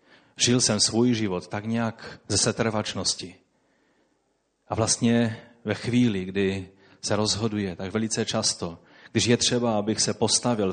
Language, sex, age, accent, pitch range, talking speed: Czech, male, 30-49, native, 95-115 Hz, 135 wpm